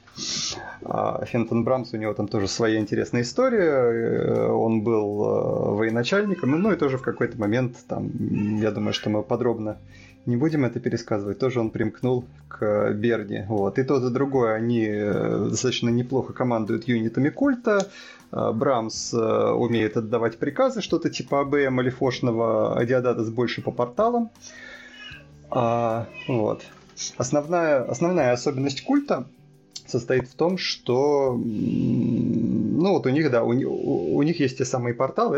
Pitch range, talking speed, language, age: 115-140 Hz, 135 wpm, Russian, 30-49